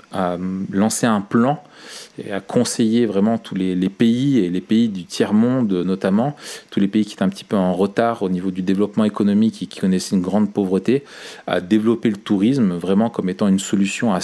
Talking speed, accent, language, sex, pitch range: 210 wpm, French, French, male, 90-105 Hz